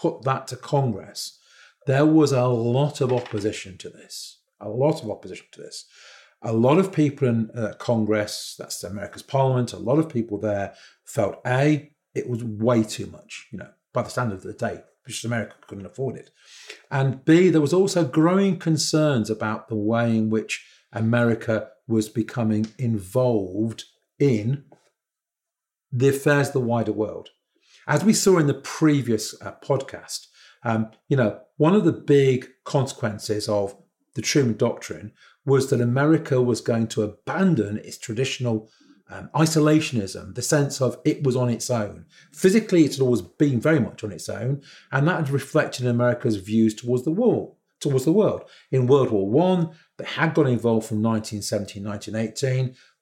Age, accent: 40-59, British